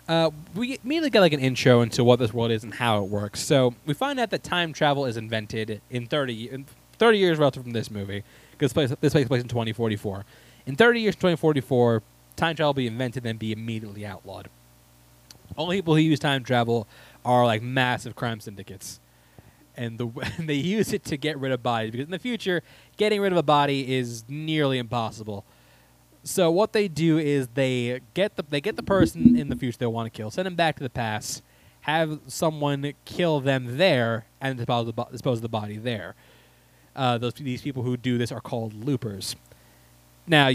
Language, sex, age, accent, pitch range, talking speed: English, male, 20-39, American, 110-155 Hz, 210 wpm